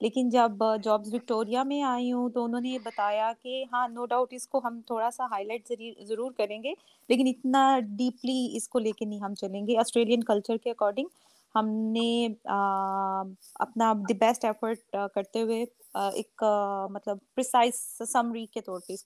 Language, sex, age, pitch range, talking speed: Urdu, female, 20-39, 215-260 Hz, 175 wpm